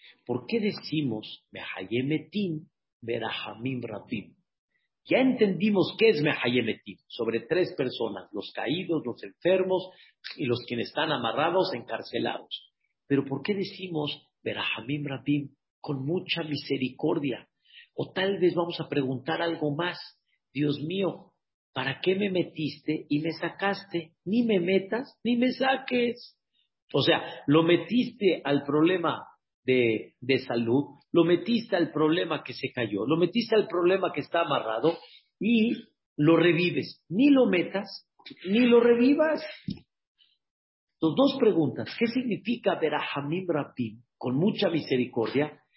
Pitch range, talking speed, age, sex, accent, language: 140-205 Hz, 130 wpm, 50-69, male, Mexican, Spanish